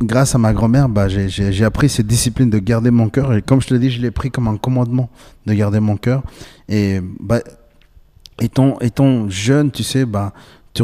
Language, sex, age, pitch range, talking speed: French, male, 30-49, 105-125 Hz, 220 wpm